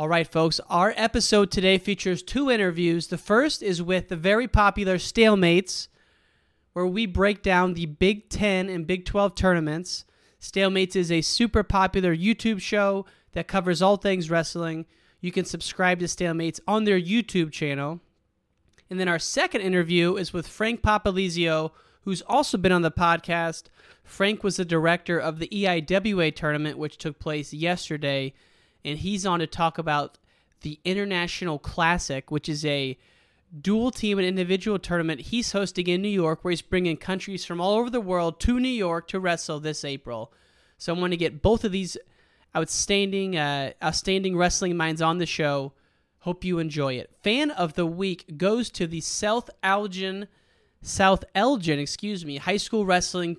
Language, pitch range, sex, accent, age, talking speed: English, 165-195 Hz, male, American, 30-49, 165 wpm